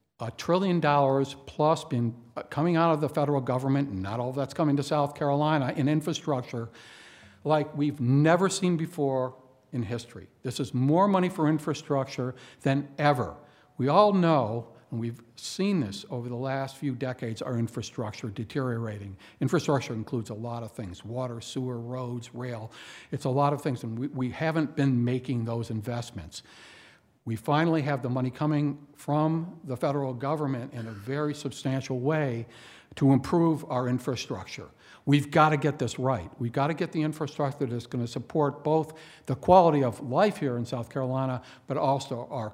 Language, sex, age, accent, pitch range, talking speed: English, male, 60-79, American, 120-150 Hz, 170 wpm